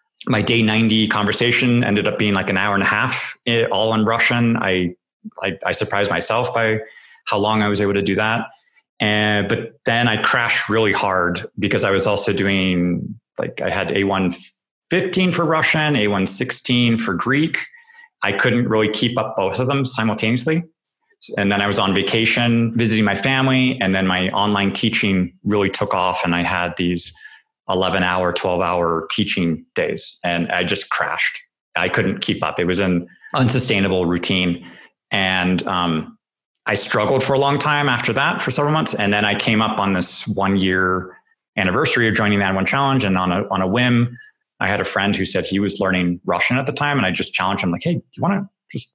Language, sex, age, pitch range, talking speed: English, male, 20-39, 95-125 Hz, 200 wpm